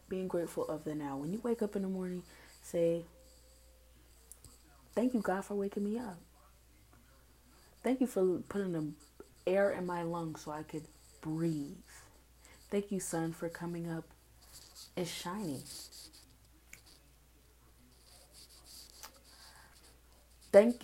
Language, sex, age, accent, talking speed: English, female, 20-39, American, 120 wpm